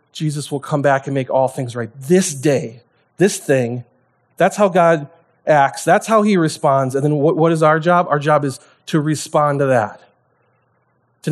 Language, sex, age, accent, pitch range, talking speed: English, male, 30-49, American, 140-185 Hz, 190 wpm